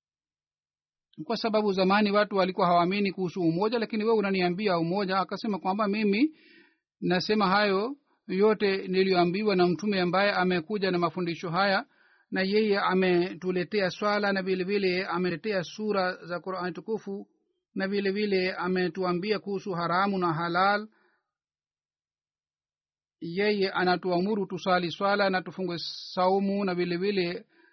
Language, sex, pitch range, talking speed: Swahili, male, 175-205 Hz, 120 wpm